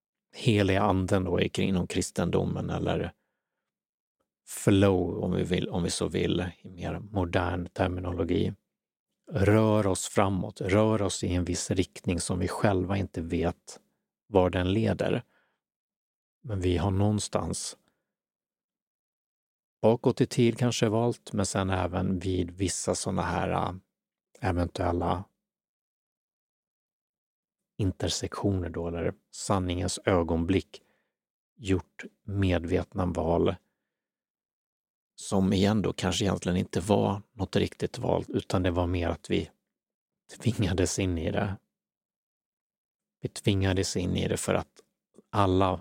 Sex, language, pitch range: male, Swedish, 90-100 Hz